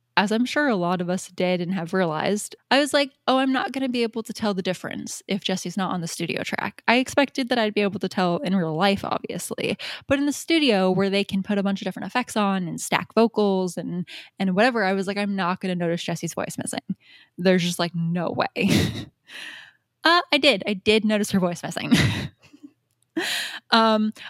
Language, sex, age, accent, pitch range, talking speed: English, female, 10-29, American, 180-235 Hz, 220 wpm